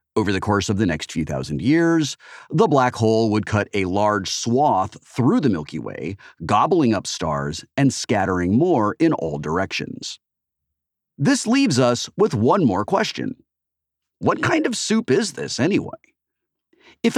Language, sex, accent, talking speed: English, male, American, 155 wpm